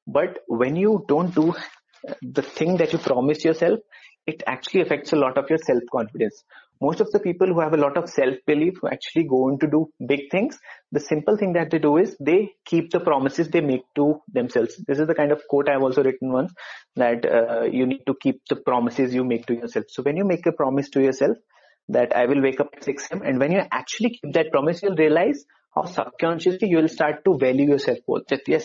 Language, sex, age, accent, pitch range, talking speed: English, male, 30-49, Indian, 130-165 Hz, 230 wpm